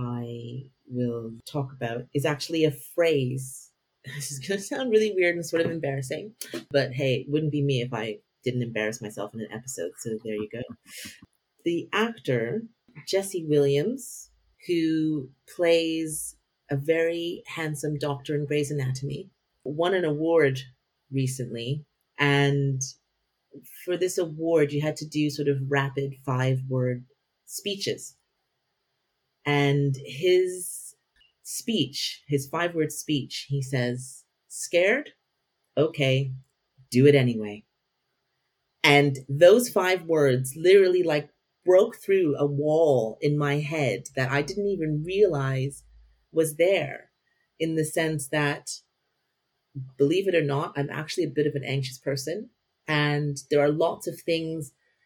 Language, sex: English, female